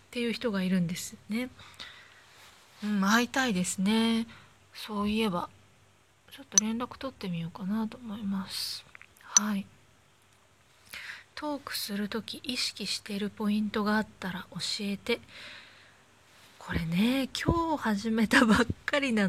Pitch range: 190-250 Hz